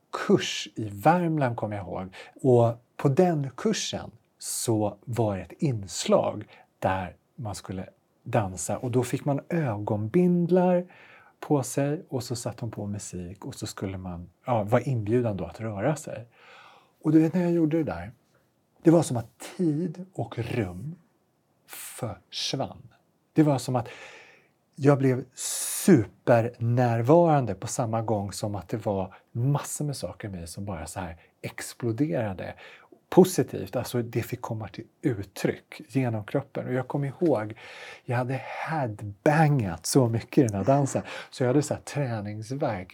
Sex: male